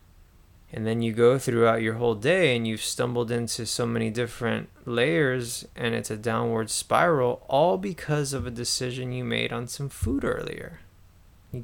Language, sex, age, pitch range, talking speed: English, male, 20-39, 95-125 Hz, 170 wpm